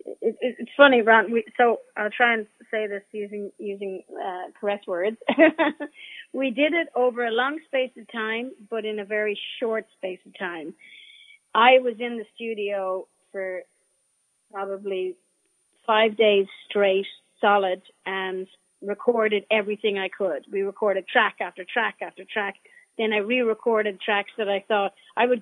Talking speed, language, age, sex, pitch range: 150 wpm, English, 40-59, female, 205-240 Hz